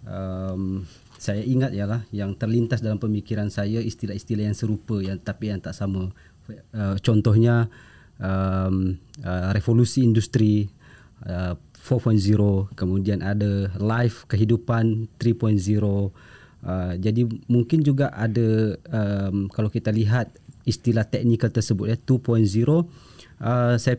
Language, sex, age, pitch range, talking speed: Malay, male, 30-49, 105-120 Hz, 120 wpm